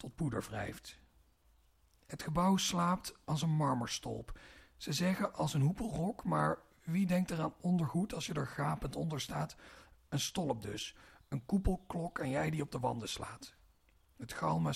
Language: Dutch